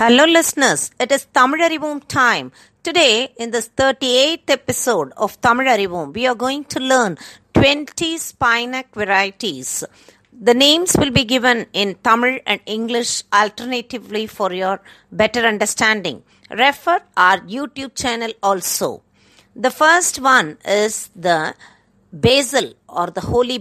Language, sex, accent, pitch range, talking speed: Tamil, female, native, 200-260 Hz, 130 wpm